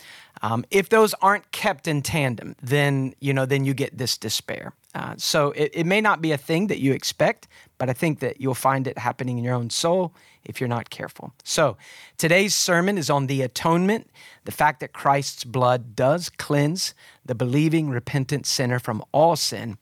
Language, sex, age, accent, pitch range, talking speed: English, male, 40-59, American, 125-165 Hz, 195 wpm